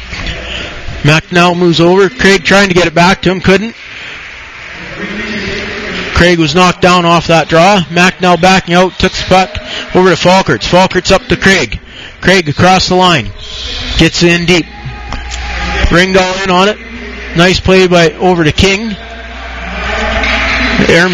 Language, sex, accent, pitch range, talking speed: English, male, American, 165-190 Hz, 140 wpm